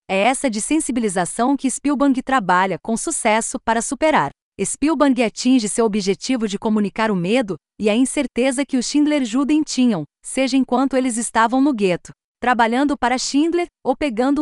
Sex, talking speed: female, 160 wpm